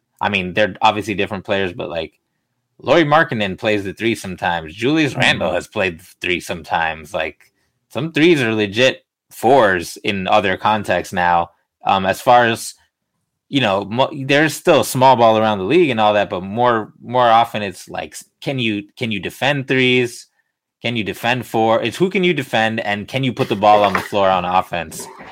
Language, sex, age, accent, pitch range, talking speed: English, male, 20-39, American, 95-130 Hz, 190 wpm